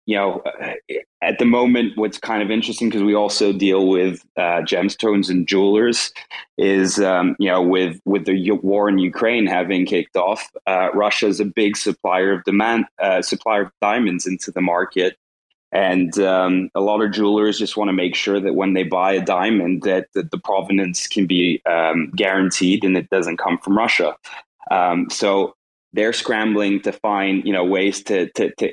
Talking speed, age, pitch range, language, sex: 185 wpm, 20-39, 95-105 Hz, English, male